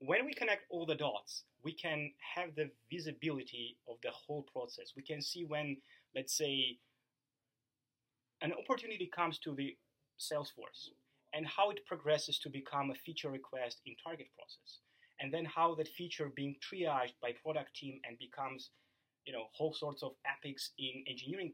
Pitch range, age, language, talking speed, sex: 130-160 Hz, 30-49, English, 165 wpm, male